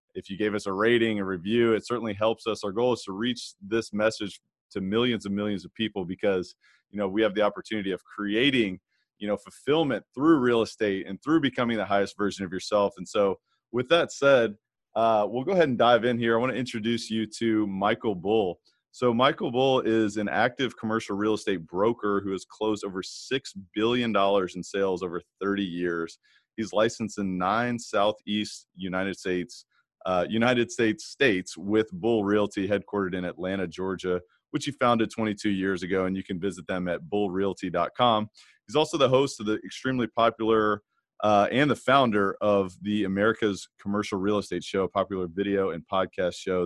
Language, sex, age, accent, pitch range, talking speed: English, male, 30-49, American, 95-115 Hz, 190 wpm